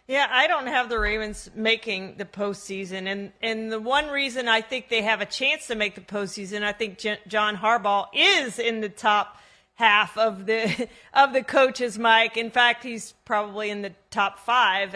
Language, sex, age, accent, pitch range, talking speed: English, female, 40-59, American, 215-265 Hz, 185 wpm